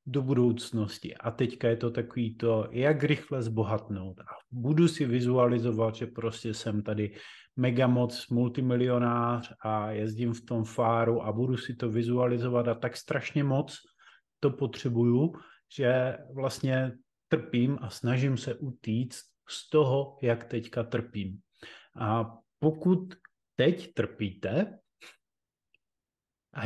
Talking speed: 125 wpm